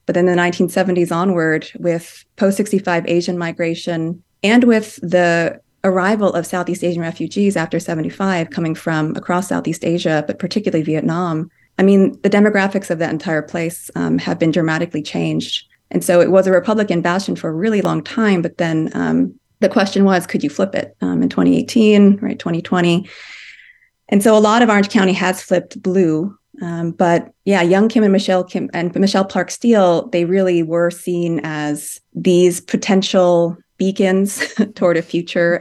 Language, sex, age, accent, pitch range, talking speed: English, female, 30-49, American, 165-200 Hz, 170 wpm